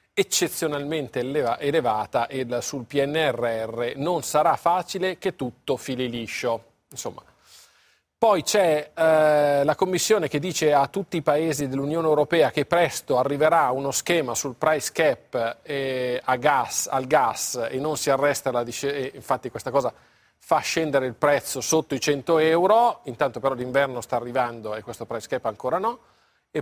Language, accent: Italian, native